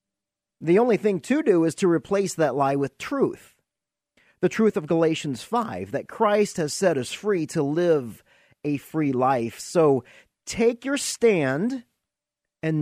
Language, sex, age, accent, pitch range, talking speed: English, male, 40-59, American, 135-195 Hz, 155 wpm